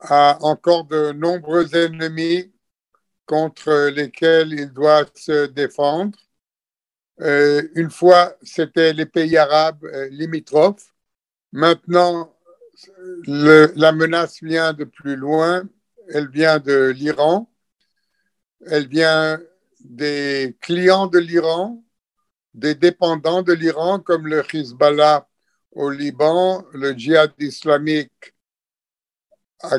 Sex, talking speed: male, 105 wpm